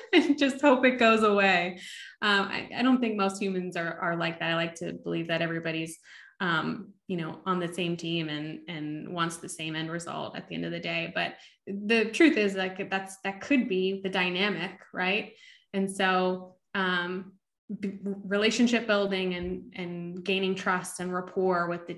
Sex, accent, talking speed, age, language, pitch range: female, American, 185 wpm, 10-29, English, 175-195 Hz